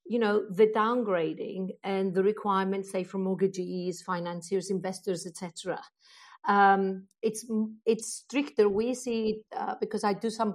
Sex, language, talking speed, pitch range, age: female, English, 135 wpm, 190-220 Hz, 50-69